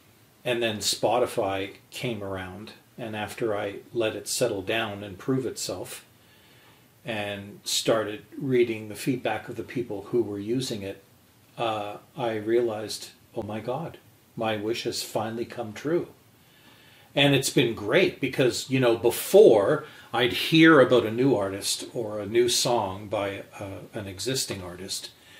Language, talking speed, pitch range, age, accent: English, 145 wpm, 100-120 Hz, 40-59, American